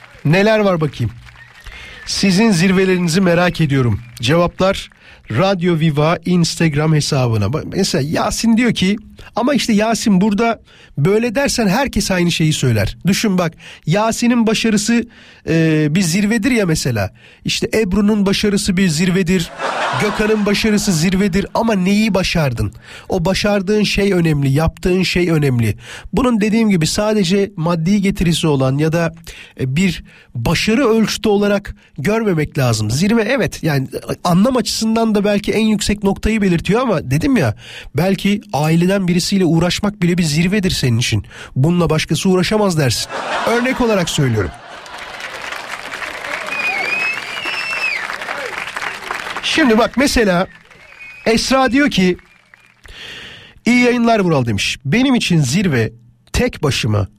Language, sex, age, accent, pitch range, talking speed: Turkish, male, 40-59, native, 155-210 Hz, 120 wpm